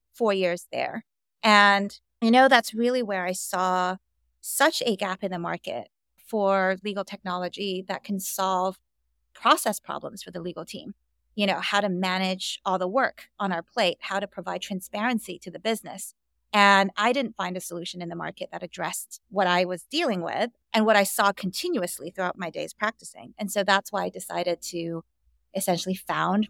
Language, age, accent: English, 30-49, American